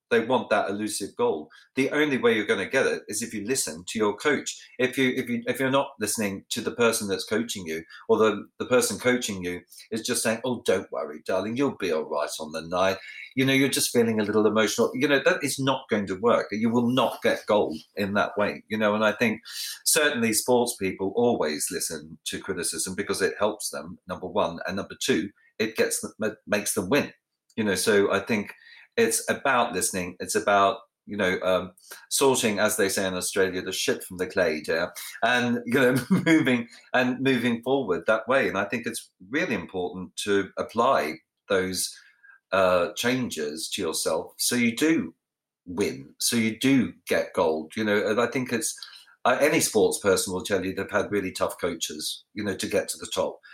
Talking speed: 210 wpm